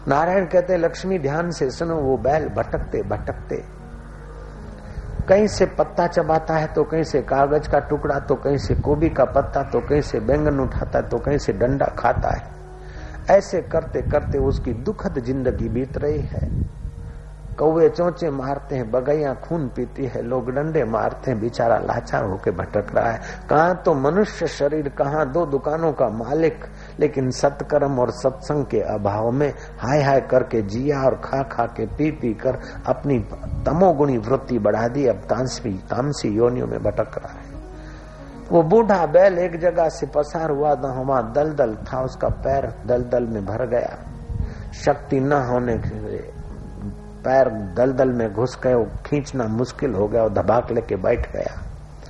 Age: 60-79